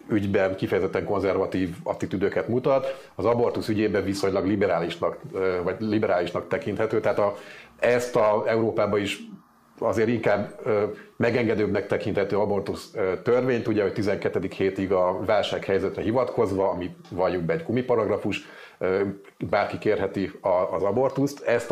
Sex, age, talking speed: male, 30-49, 115 wpm